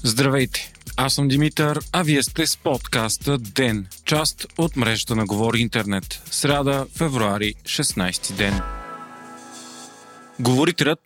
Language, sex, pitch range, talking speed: Bulgarian, male, 120-160 Hz, 115 wpm